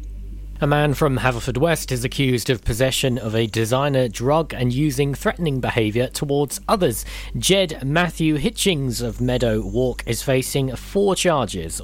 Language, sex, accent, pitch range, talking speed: English, male, British, 105-135 Hz, 145 wpm